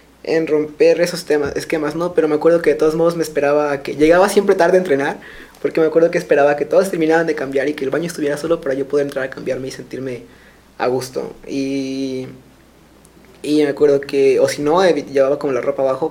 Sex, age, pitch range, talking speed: male, 20-39, 140-160 Hz, 240 wpm